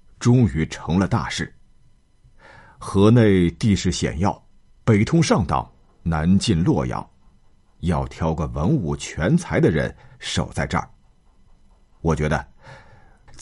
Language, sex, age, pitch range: Chinese, male, 50-69, 75-110 Hz